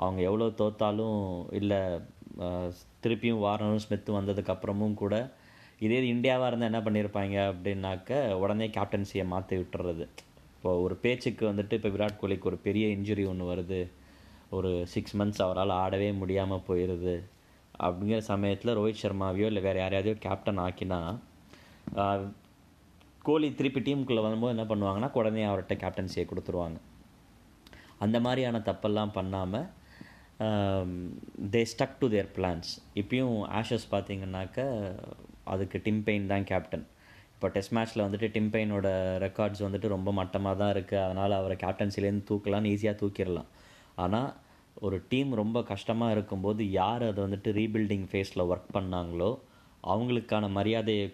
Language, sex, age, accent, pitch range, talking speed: Tamil, male, 20-39, native, 95-110 Hz, 125 wpm